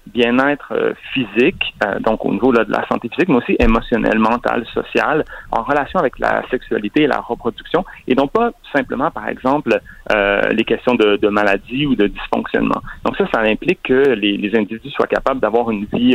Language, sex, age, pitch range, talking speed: French, male, 40-59, 110-135 Hz, 195 wpm